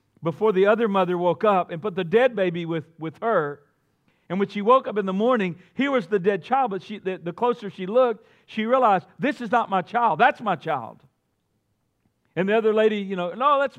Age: 50-69